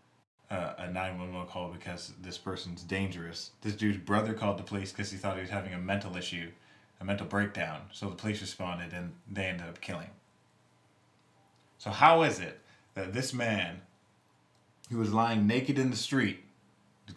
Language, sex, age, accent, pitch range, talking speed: English, male, 20-39, American, 95-120 Hz, 175 wpm